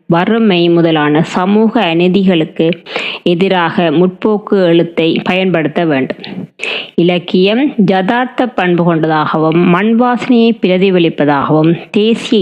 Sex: female